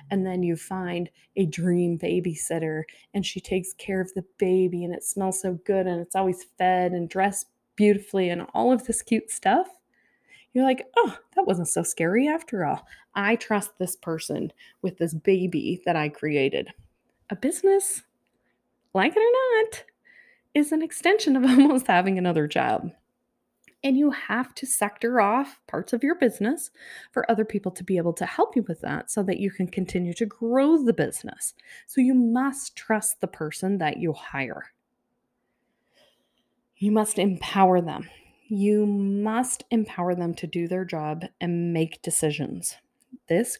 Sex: female